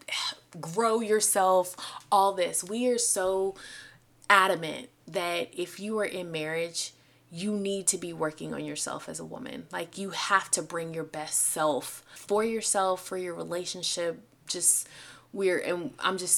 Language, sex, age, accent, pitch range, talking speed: English, female, 20-39, American, 160-190 Hz, 155 wpm